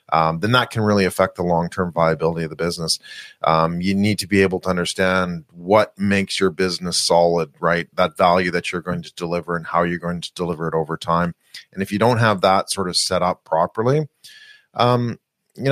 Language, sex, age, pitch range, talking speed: English, male, 30-49, 85-105 Hz, 210 wpm